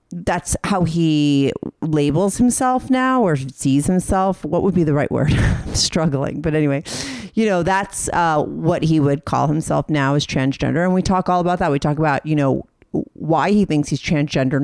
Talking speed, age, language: 190 wpm, 40-59, English